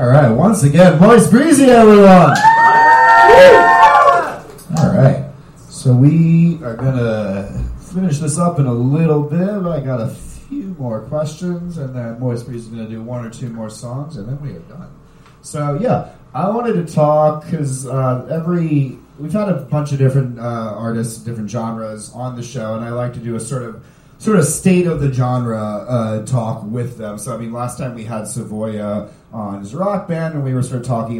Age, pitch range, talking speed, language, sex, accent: 30-49, 110-160 Hz, 190 wpm, English, male, American